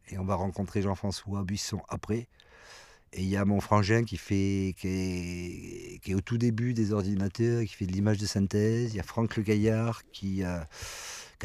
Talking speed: 205 wpm